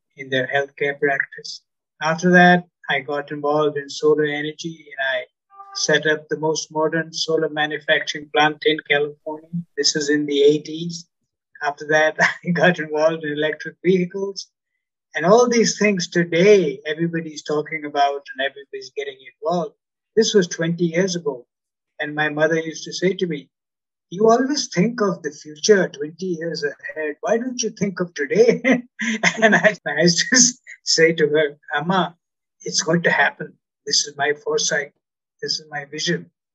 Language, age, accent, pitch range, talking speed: English, 60-79, Indian, 150-215 Hz, 160 wpm